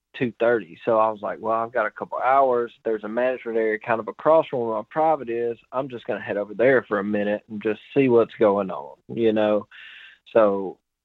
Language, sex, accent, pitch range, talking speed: English, male, American, 105-130 Hz, 230 wpm